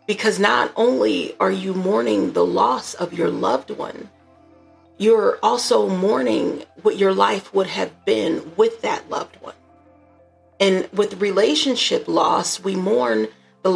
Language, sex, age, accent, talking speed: English, female, 40-59, American, 140 wpm